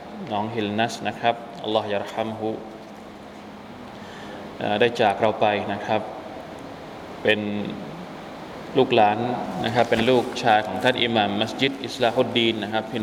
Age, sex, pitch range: 20-39, male, 105-120 Hz